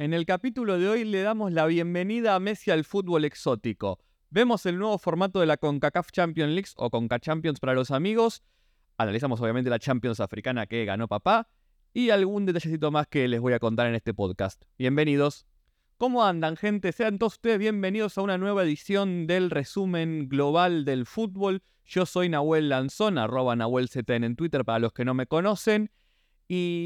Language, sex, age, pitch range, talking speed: Spanish, male, 20-39, 125-195 Hz, 180 wpm